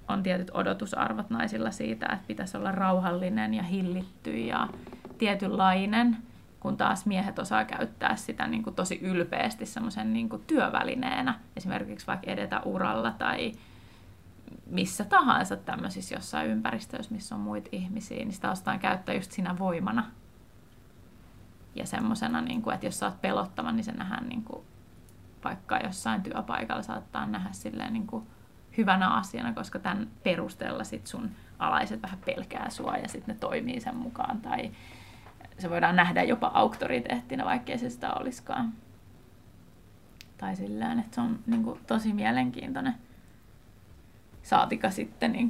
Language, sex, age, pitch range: Finnish, female, 20-39, 185-255 Hz